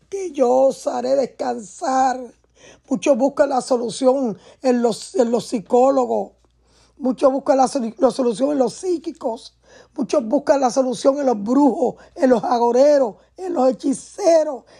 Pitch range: 220-275 Hz